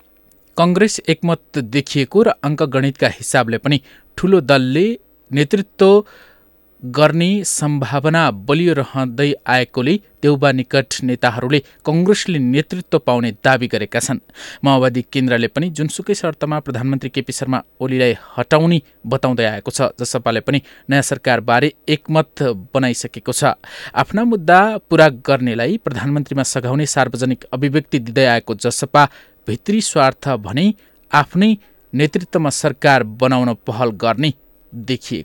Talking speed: 95 wpm